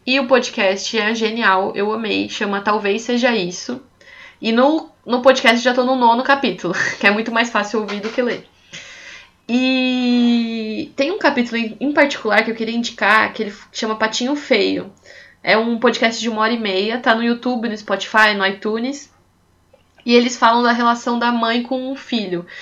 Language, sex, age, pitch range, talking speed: English, female, 20-39, 210-250 Hz, 185 wpm